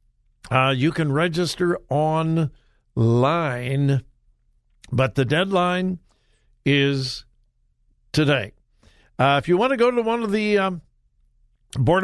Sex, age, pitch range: male, 60-79, 135-185 Hz